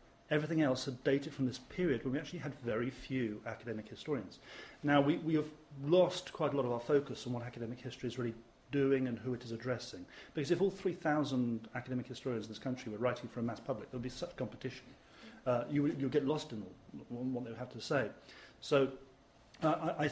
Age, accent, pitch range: 40-59, British, 120-150 Hz